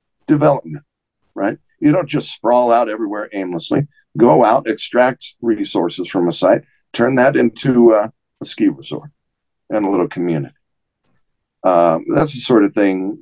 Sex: male